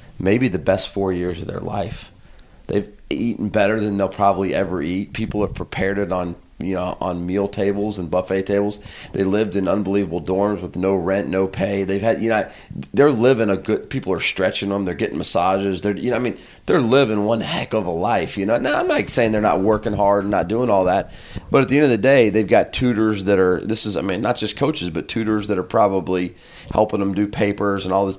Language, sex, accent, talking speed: English, male, American, 240 wpm